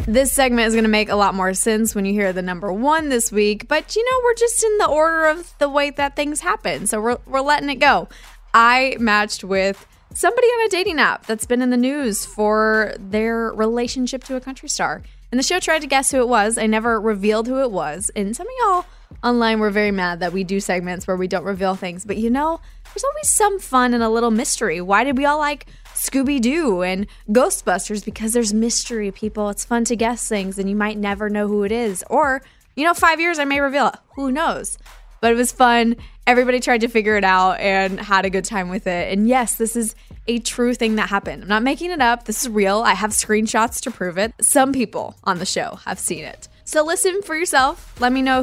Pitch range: 210-280 Hz